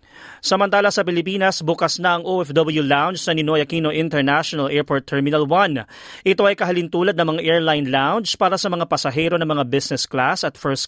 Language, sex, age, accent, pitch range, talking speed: Filipino, male, 40-59, native, 150-195 Hz, 175 wpm